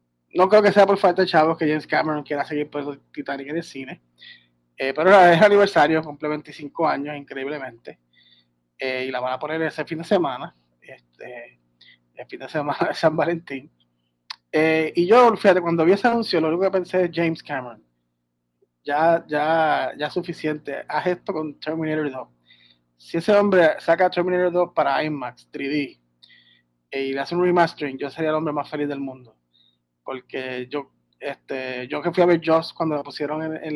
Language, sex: English, male